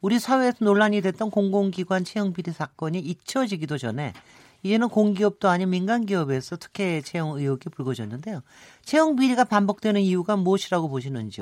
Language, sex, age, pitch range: Korean, male, 40-59, 135-210 Hz